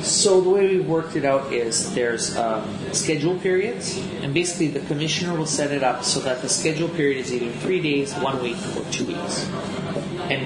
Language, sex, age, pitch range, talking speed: Finnish, male, 30-49, 140-185 Hz, 200 wpm